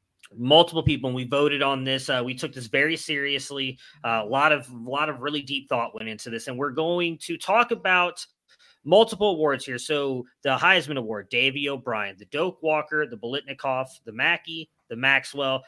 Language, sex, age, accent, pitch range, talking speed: English, male, 30-49, American, 130-165 Hz, 190 wpm